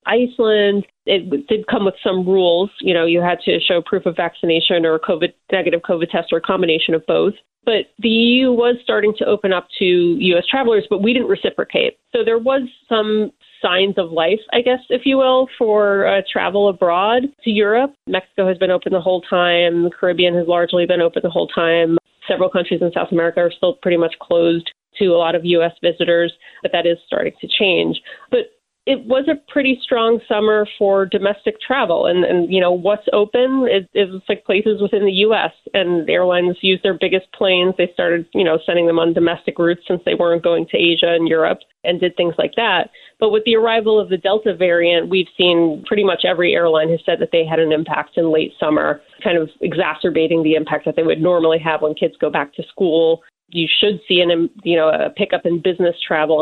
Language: English